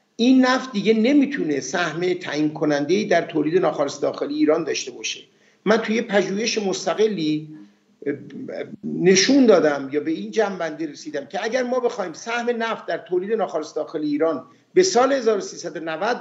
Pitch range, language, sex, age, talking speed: 185-260 Hz, Persian, male, 50-69, 145 wpm